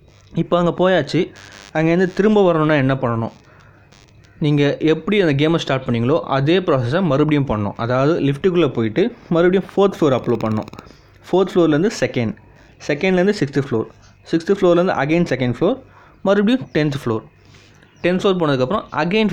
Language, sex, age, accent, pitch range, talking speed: Tamil, male, 20-39, native, 125-165 Hz, 135 wpm